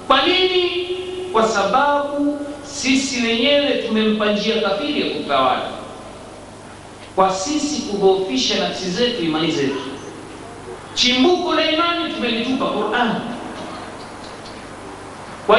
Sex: male